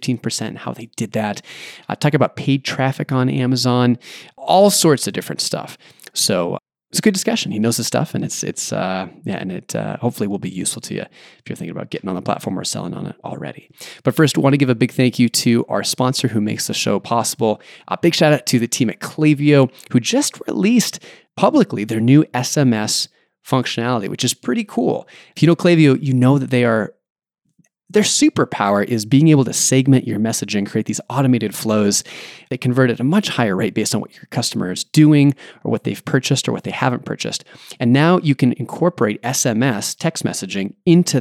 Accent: American